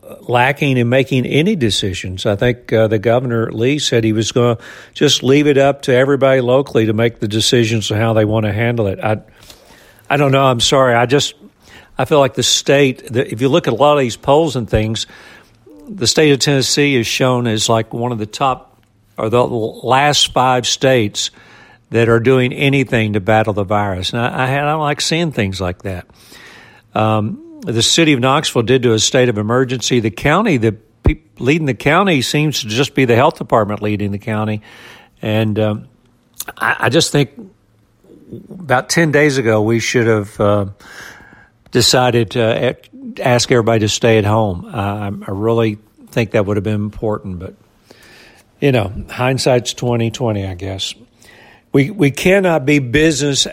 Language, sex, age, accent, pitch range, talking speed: English, male, 60-79, American, 110-135 Hz, 185 wpm